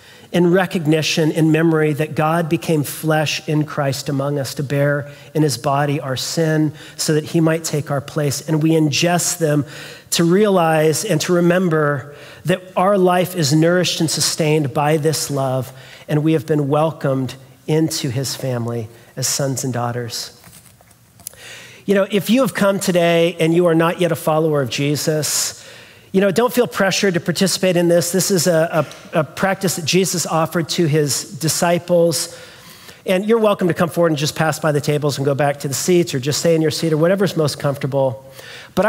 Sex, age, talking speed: male, 40-59, 190 wpm